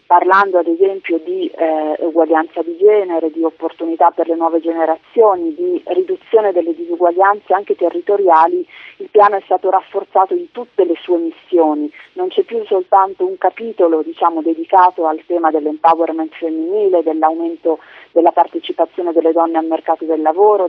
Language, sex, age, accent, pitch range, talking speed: Italian, female, 40-59, native, 165-210 Hz, 145 wpm